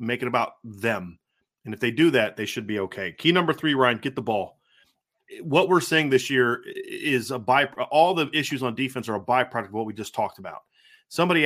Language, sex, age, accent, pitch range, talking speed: English, male, 30-49, American, 120-155 Hz, 225 wpm